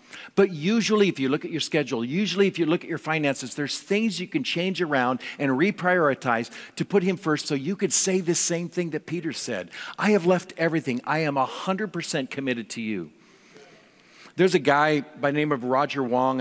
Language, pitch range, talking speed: English, 120-165 Hz, 210 wpm